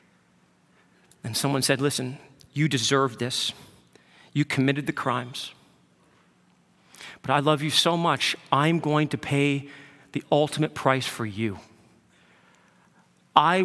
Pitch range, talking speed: 150-225 Hz, 120 wpm